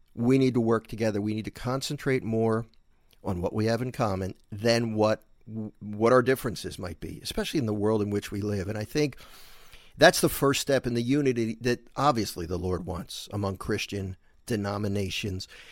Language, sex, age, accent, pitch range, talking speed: English, male, 50-69, American, 105-135 Hz, 185 wpm